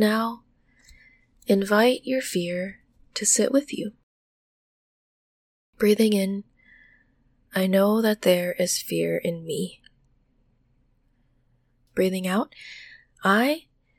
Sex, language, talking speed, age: female, English, 90 wpm, 20-39